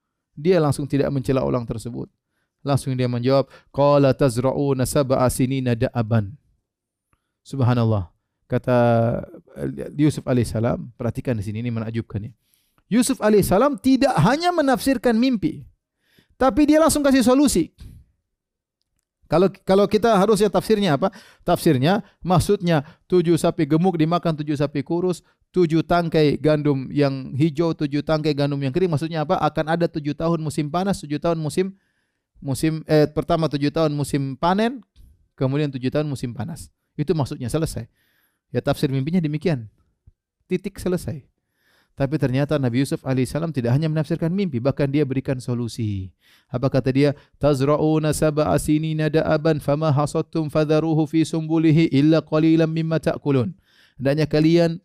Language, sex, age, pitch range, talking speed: Indonesian, male, 30-49, 130-170 Hz, 135 wpm